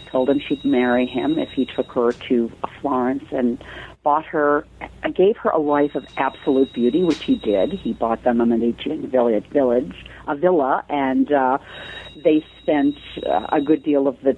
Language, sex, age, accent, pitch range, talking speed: English, female, 50-69, American, 125-160 Hz, 170 wpm